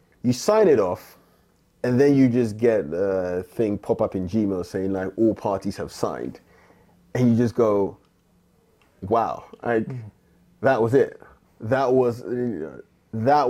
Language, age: English, 30-49